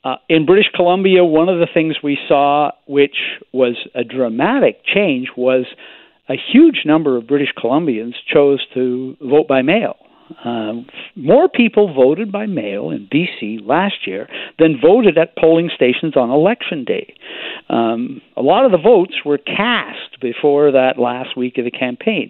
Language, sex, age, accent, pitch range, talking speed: English, male, 60-79, American, 130-175 Hz, 160 wpm